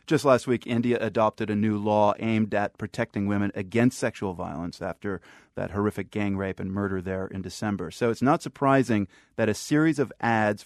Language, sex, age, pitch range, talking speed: English, male, 30-49, 100-120 Hz, 190 wpm